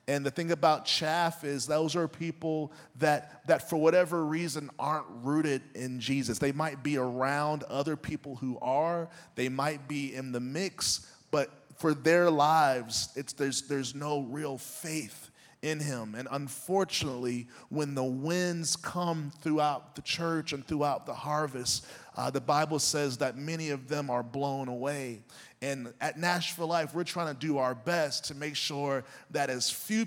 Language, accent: English, American